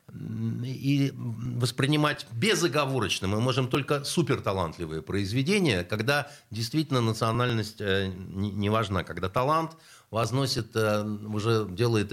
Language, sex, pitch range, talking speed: Russian, male, 100-130 Hz, 105 wpm